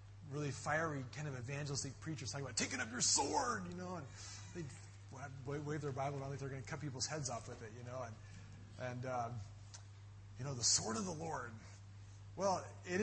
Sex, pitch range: male, 105-155 Hz